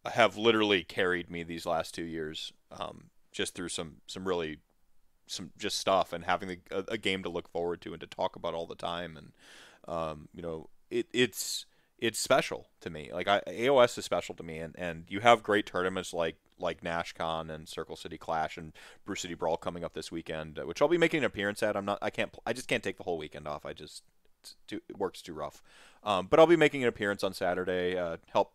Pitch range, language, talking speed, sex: 85-115 Hz, English, 230 wpm, male